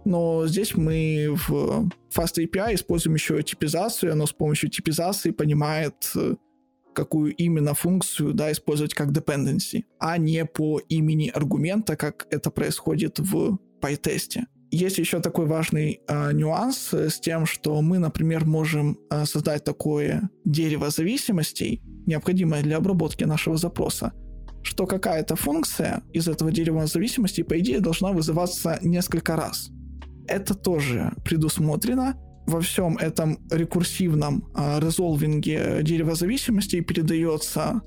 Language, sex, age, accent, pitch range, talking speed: Ukrainian, male, 20-39, native, 155-185 Hz, 125 wpm